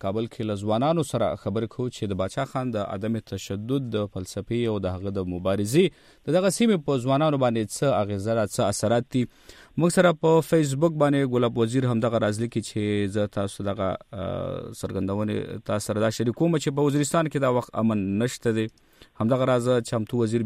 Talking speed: 180 wpm